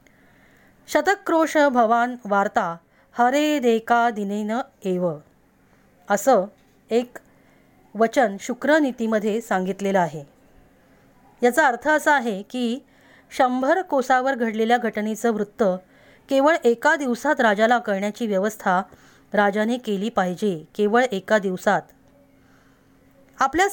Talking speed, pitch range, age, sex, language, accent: 95 wpm, 210-275 Hz, 20-39, female, Marathi, native